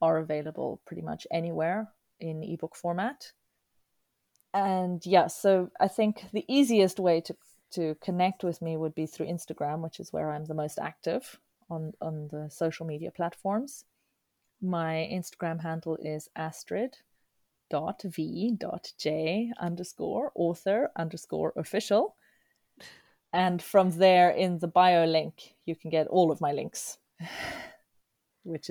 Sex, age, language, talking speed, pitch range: female, 30-49, English, 130 wpm, 155-185 Hz